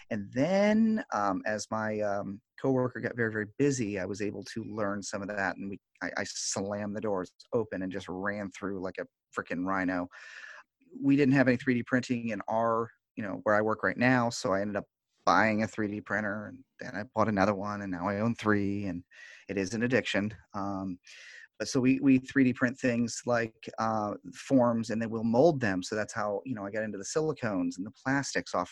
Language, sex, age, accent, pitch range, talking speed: English, male, 30-49, American, 100-125 Hz, 215 wpm